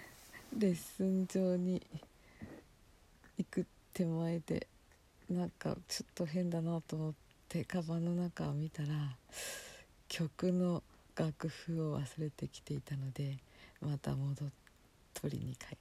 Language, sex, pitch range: Japanese, female, 150-215 Hz